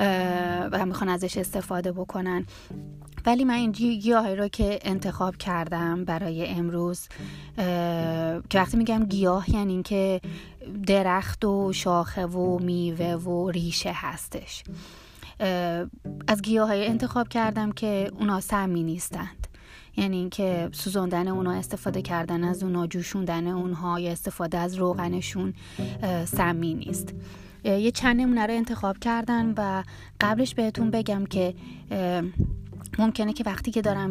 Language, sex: Persian, female